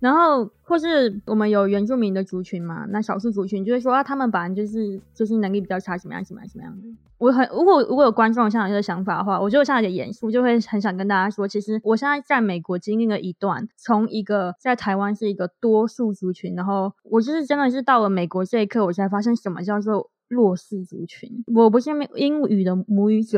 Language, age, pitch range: Chinese, 20-39, 195-235 Hz